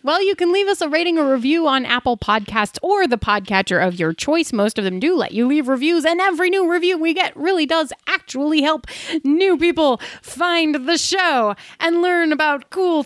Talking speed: 205 wpm